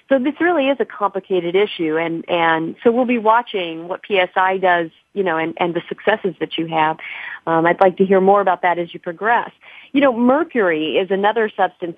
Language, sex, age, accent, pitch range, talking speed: English, female, 40-59, American, 190-235 Hz, 210 wpm